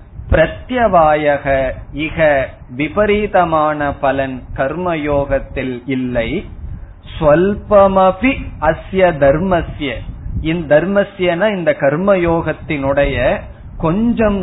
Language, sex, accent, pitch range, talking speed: Tamil, male, native, 135-180 Hz, 50 wpm